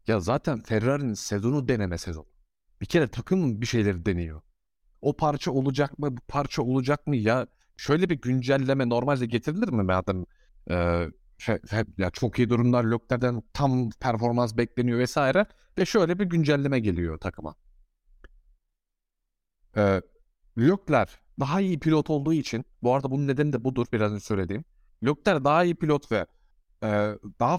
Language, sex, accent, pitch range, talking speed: Turkish, male, native, 110-150 Hz, 150 wpm